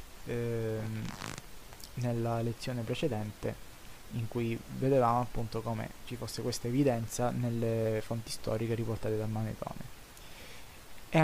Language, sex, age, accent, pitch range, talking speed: Italian, male, 20-39, native, 115-135 Hz, 105 wpm